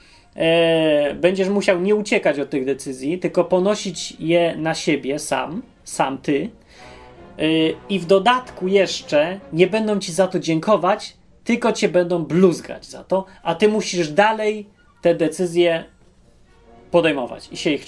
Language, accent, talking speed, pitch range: Polish, native, 140 wpm, 165-210 Hz